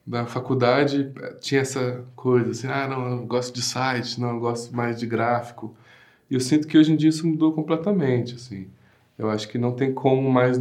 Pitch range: 125-140 Hz